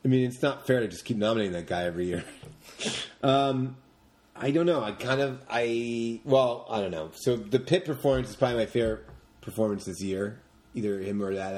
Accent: American